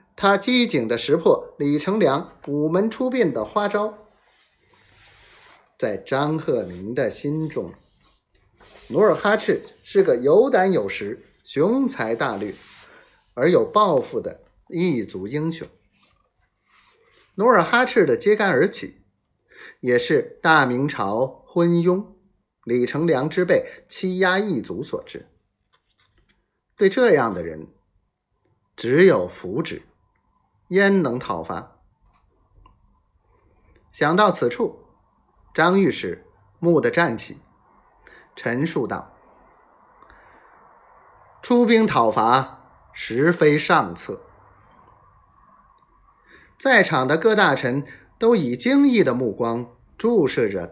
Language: Chinese